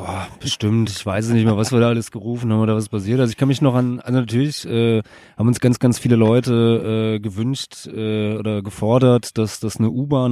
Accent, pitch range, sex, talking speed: German, 105-125 Hz, male, 225 wpm